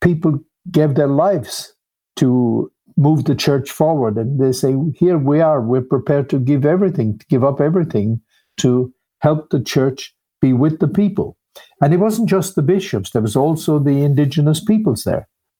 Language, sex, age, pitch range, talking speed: English, male, 60-79, 120-160 Hz, 175 wpm